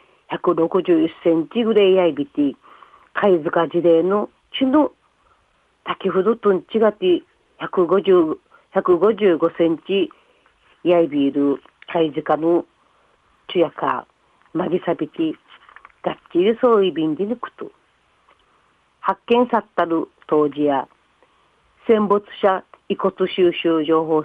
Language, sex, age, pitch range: Japanese, female, 40-59, 165-225 Hz